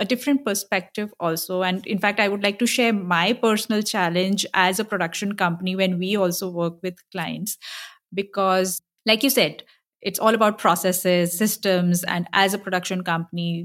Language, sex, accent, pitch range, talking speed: English, female, Indian, 170-205 Hz, 170 wpm